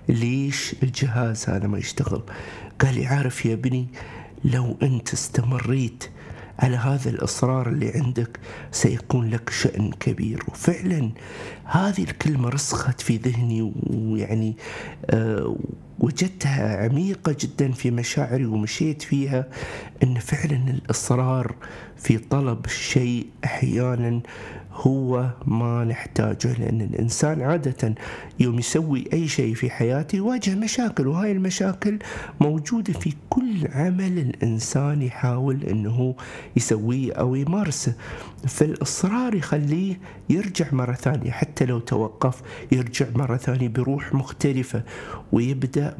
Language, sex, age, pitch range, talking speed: Arabic, male, 50-69, 115-145 Hz, 110 wpm